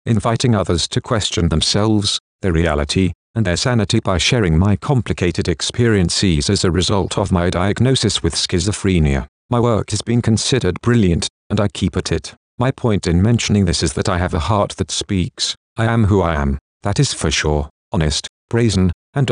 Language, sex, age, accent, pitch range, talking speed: English, male, 50-69, British, 85-115 Hz, 185 wpm